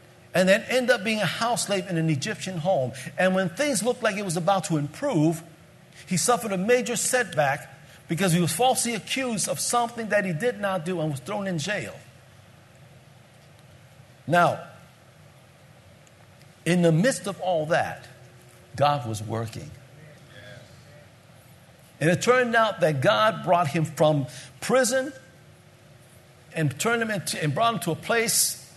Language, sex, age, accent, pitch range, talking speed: English, male, 50-69, American, 130-185 Hz, 150 wpm